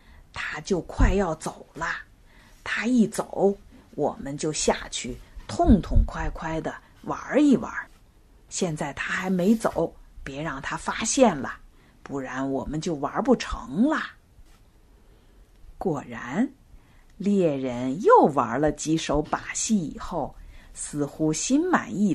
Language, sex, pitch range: Chinese, female, 140-220 Hz